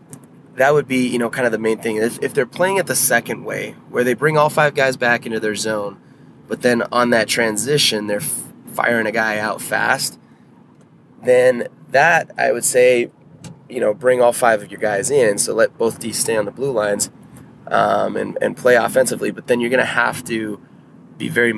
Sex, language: male, English